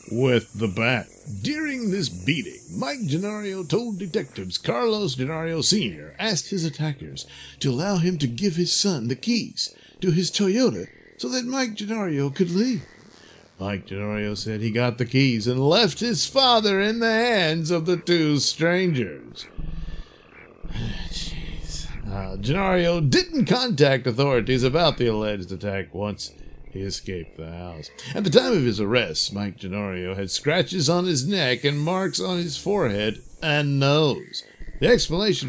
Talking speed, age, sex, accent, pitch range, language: 150 wpm, 50-69, male, American, 115-185 Hz, English